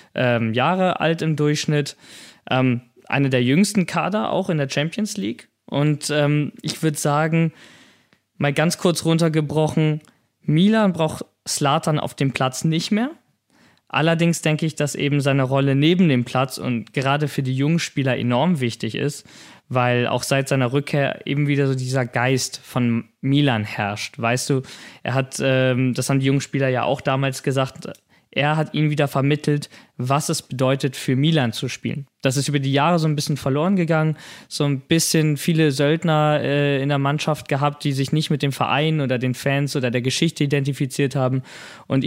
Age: 20-39